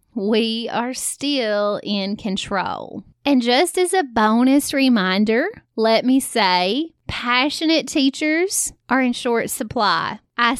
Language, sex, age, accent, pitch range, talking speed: English, female, 30-49, American, 220-270 Hz, 120 wpm